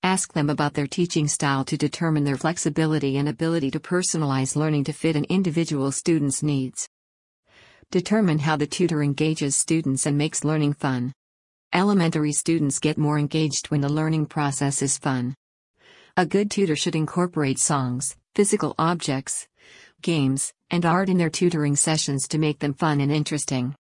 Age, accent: 50-69, American